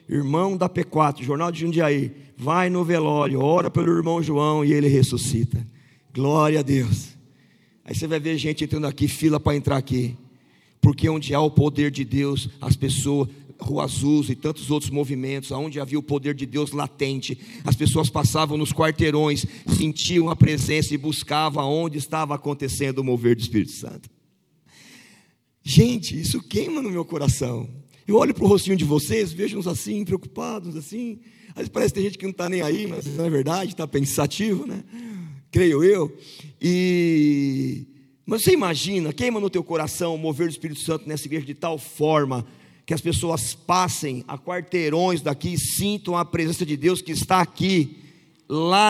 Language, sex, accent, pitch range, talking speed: Portuguese, male, Brazilian, 140-175 Hz, 170 wpm